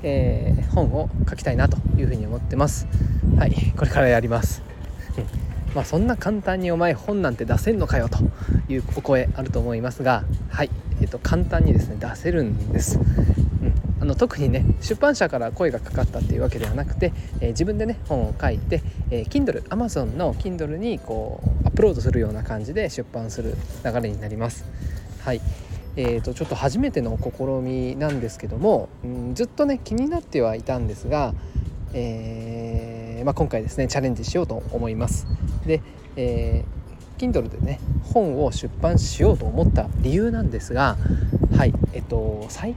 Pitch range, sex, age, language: 110-160 Hz, male, 20-39, Japanese